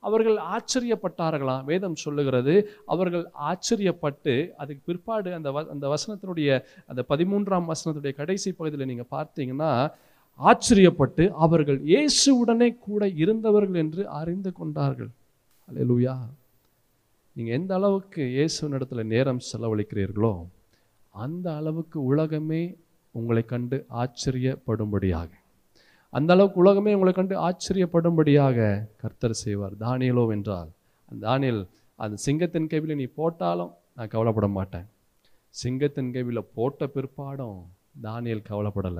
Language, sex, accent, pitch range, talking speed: Tamil, male, native, 120-175 Hz, 105 wpm